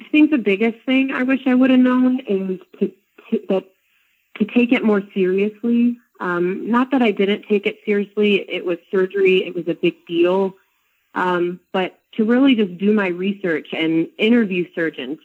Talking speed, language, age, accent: 175 wpm, English, 30-49, American